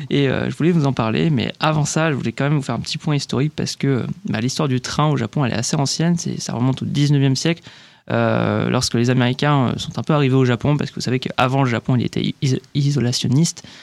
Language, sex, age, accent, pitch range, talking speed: French, male, 20-39, French, 125-160 Hz, 250 wpm